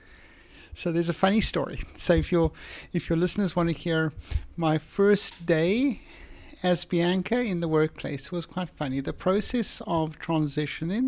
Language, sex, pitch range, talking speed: Hebrew, male, 160-190 Hz, 155 wpm